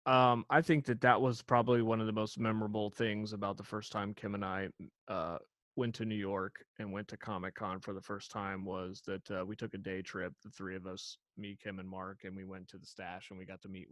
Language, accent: English, American